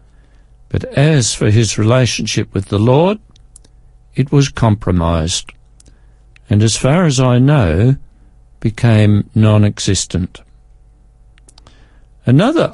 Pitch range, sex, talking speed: 110-140 Hz, male, 95 wpm